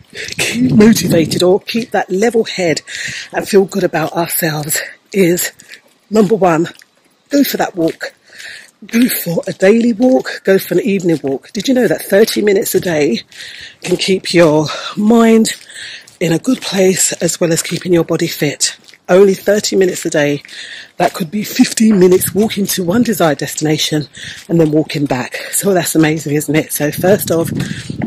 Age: 40-59